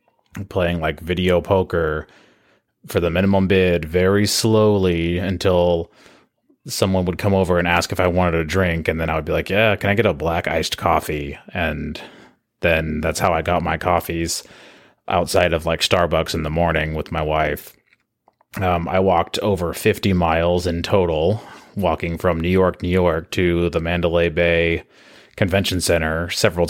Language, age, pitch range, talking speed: English, 30-49, 85-95 Hz, 170 wpm